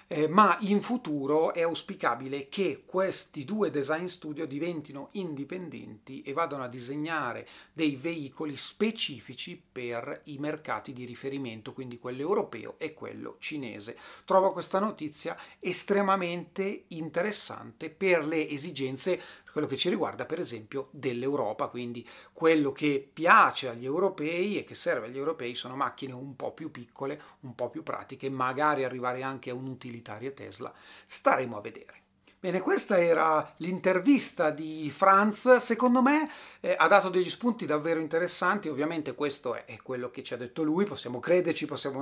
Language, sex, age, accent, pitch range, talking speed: Italian, male, 40-59, native, 135-185 Hz, 150 wpm